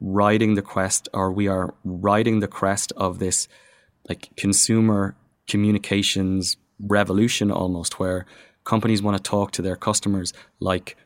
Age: 20-39